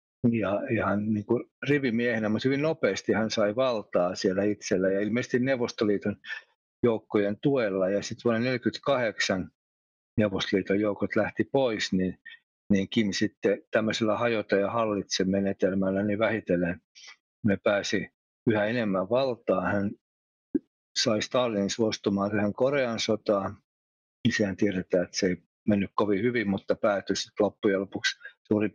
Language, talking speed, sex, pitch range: Finnish, 130 wpm, male, 95-120 Hz